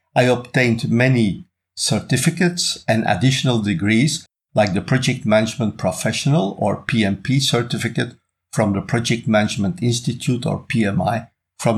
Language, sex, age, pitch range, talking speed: English, male, 50-69, 105-135 Hz, 115 wpm